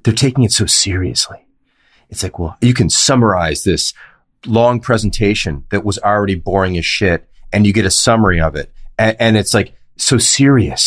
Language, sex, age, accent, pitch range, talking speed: English, male, 30-49, American, 95-130 Hz, 180 wpm